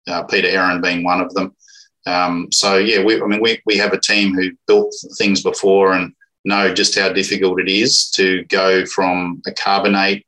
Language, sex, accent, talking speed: English, male, Australian, 200 wpm